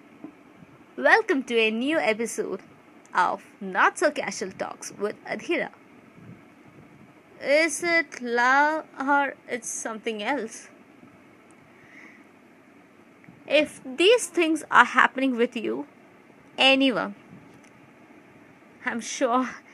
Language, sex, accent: English, female, Indian